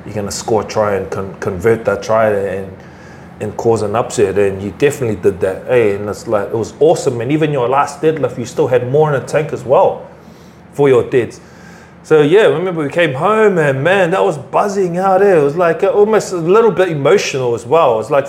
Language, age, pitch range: English, 30-49, 130-195 Hz